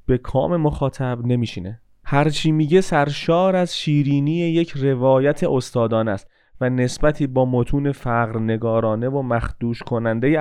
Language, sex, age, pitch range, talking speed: Persian, male, 30-49, 115-140 Hz, 120 wpm